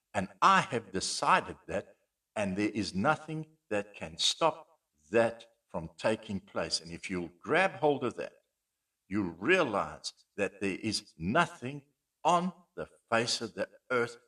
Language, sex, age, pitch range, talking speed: English, male, 60-79, 100-140 Hz, 145 wpm